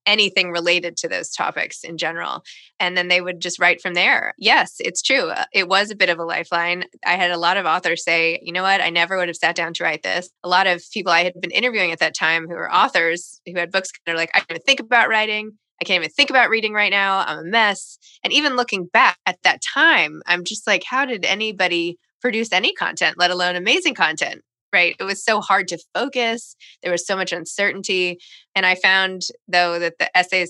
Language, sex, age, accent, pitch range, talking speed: English, female, 20-39, American, 175-210 Hz, 235 wpm